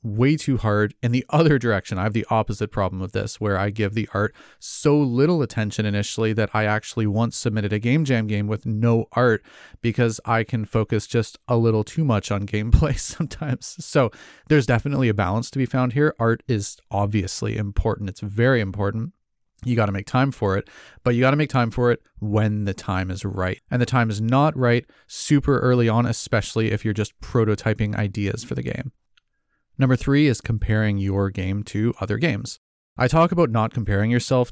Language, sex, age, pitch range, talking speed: English, male, 30-49, 105-125 Hz, 200 wpm